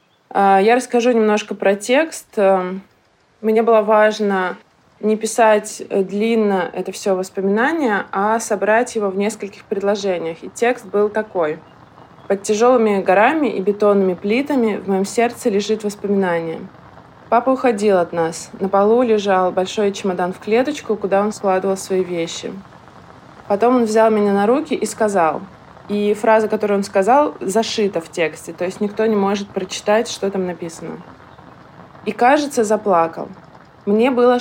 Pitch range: 190-220 Hz